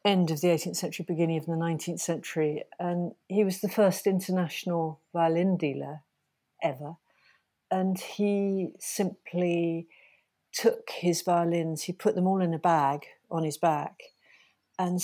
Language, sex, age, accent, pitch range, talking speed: English, female, 50-69, British, 165-195 Hz, 145 wpm